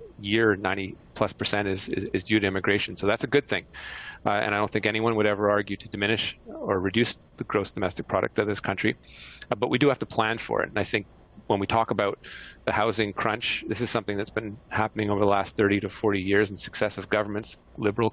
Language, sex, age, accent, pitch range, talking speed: English, male, 40-59, American, 100-115 Hz, 230 wpm